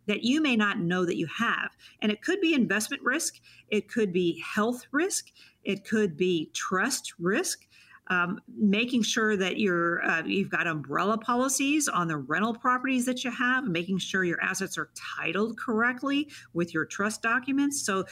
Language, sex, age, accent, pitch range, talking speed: English, female, 50-69, American, 170-235 Hz, 170 wpm